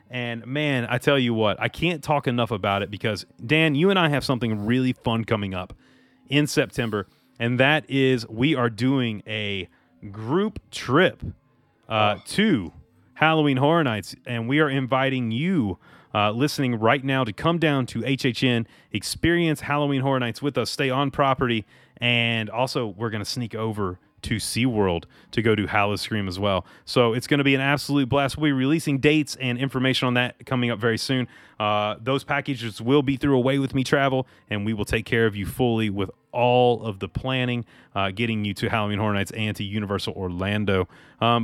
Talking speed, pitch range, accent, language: 195 wpm, 110-145 Hz, American, English